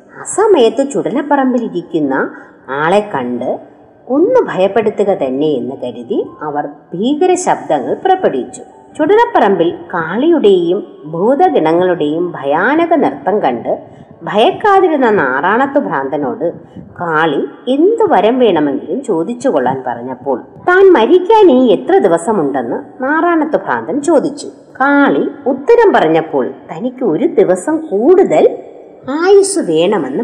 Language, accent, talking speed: Malayalam, native, 85 wpm